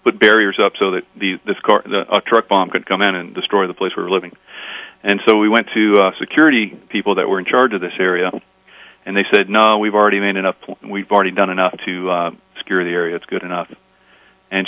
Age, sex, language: 40-59, male, English